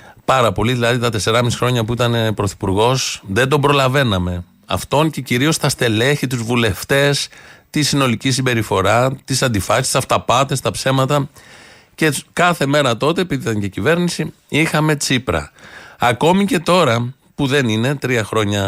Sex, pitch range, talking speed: male, 115-150 Hz, 150 wpm